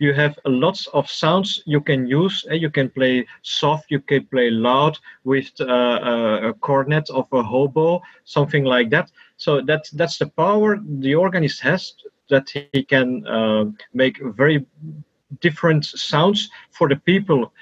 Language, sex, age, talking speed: English, male, 40-59, 155 wpm